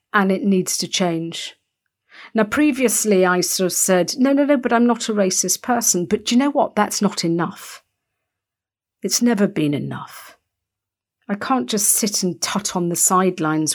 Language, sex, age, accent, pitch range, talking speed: English, female, 50-69, British, 165-205 Hz, 180 wpm